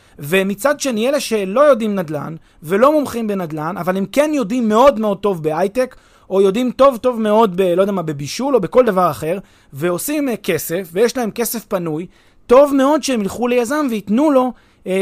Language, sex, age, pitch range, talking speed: Hebrew, male, 30-49, 155-235 Hz, 180 wpm